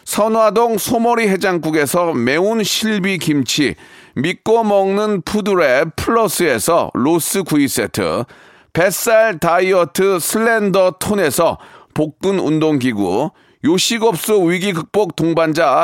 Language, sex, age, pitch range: Korean, male, 40-59, 170-220 Hz